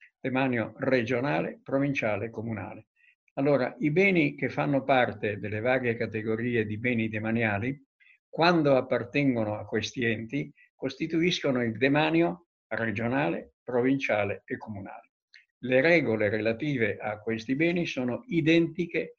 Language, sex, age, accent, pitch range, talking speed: Italian, male, 60-79, native, 115-145 Hz, 115 wpm